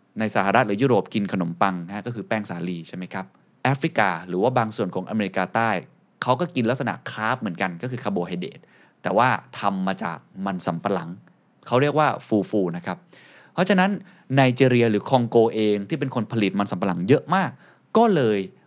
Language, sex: Thai, male